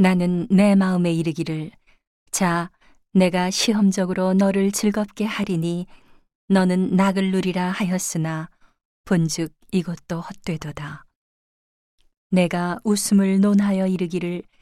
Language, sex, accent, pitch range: Korean, female, native, 165-195 Hz